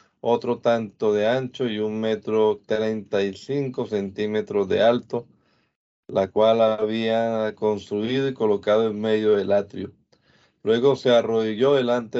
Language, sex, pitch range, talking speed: Spanish, male, 105-135 Hz, 135 wpm